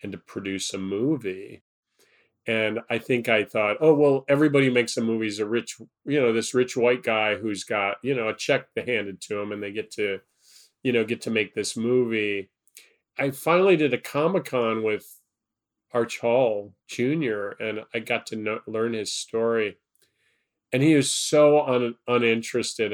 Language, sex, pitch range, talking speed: English, male, 105-125 Hz, 180 wpm